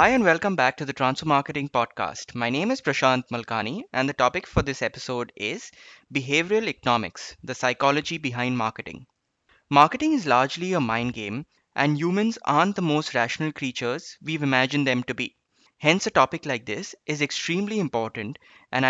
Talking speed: 170 wpm